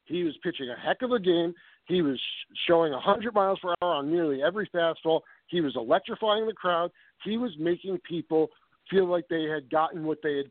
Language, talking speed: English, 205 wpm